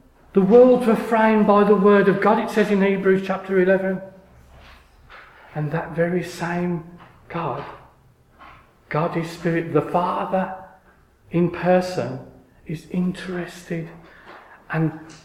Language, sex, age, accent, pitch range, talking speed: English, male, 40-59, British, 160-245 Hz, 120 wpm